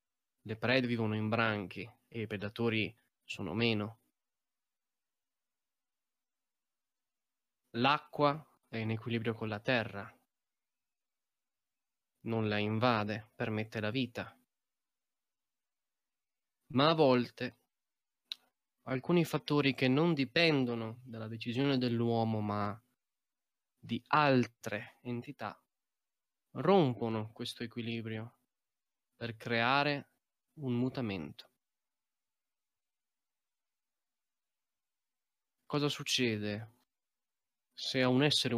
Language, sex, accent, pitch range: Italian, male, native, 110-130 Hz